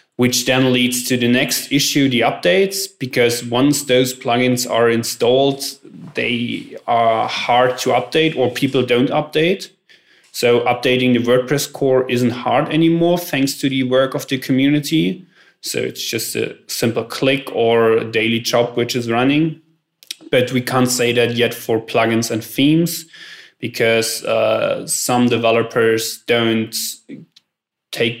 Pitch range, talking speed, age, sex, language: 115-130 Hz, 145 wpm, 20-39, male, English